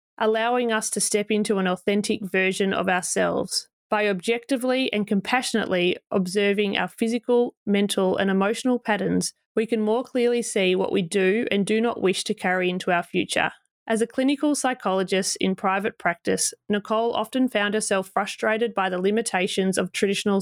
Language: English